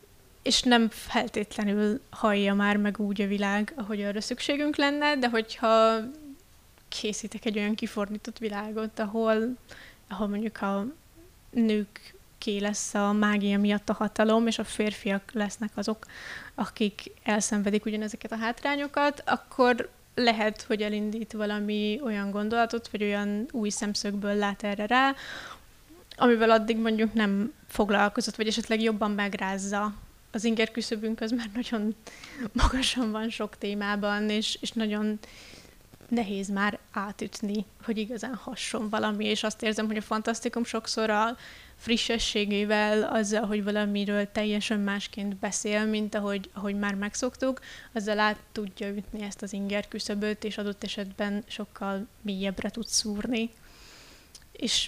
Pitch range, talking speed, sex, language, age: 205-230 Hz, 130 wpm, female, Hungarian, 20-39